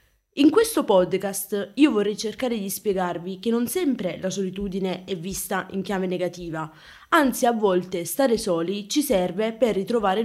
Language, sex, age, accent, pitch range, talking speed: Italian, female, 20-39, native, 180-235 Hz, 160 wpm